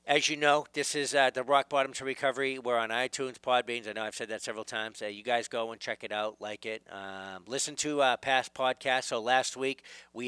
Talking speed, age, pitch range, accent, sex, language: 240 wpm, 50-69, 95-125 Hz, American, male, English